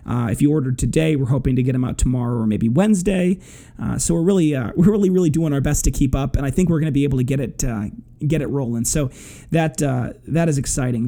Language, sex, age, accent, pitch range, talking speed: English, male, 30-49, American, 135-165 Hz, 270 wpm